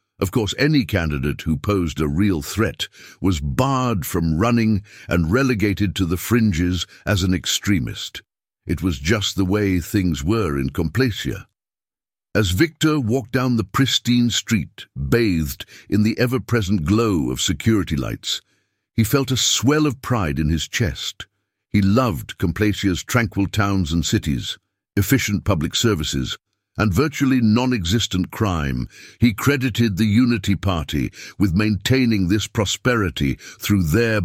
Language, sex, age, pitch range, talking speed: English, male, 60-79, 90-115 Hz, 140 wpm